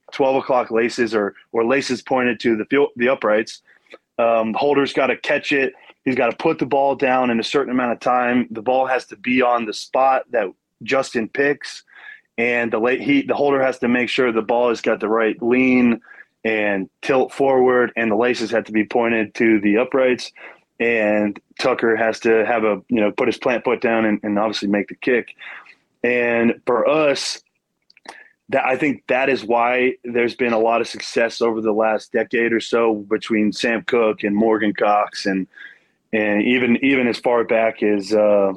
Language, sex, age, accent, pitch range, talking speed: English, male, 20-39, American, 110-125 Hz, 195 wpm